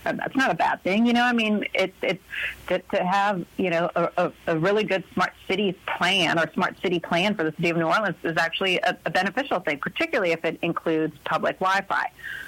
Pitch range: 170-215 Hz